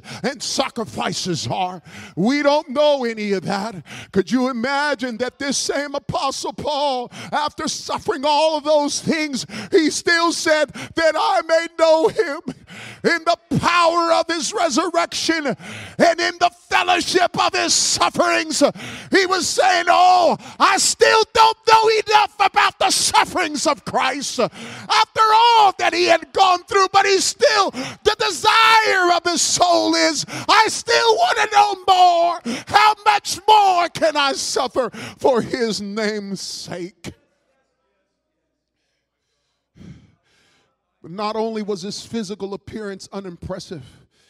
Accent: American